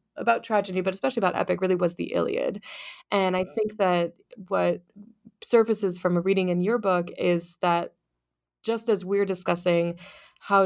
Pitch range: 175-210 Hz